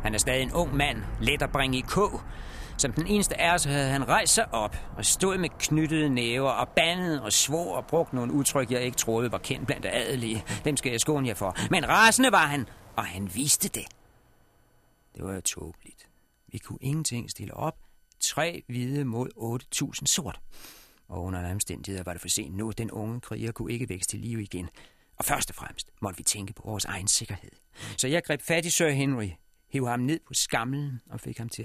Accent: native